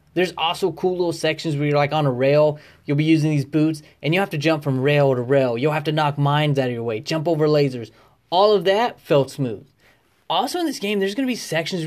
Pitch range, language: 140-190 Hz, English